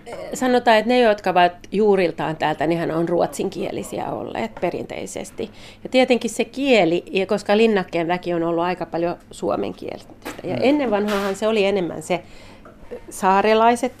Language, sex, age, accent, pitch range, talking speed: Finnish, female, 40-59, native, 180-225 Hz, 135 wpm